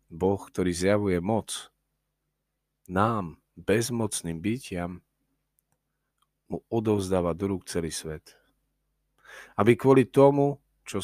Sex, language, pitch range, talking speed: male, Slovak, 90-110 Hz, 90 wpm